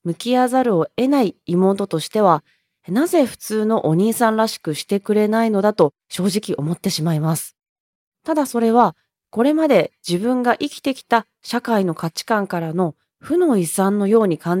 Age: 20-39